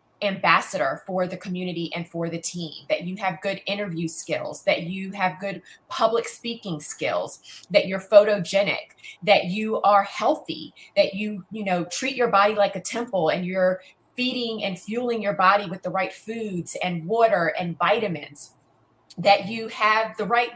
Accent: American